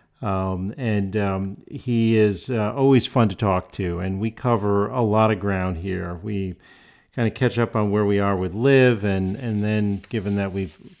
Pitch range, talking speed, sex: 95-115 Hz, 195 wpm, male